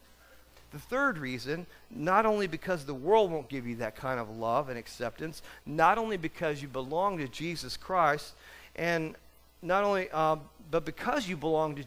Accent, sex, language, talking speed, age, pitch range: American, male, English, 170 wpm, 40-59, 115-160 Hz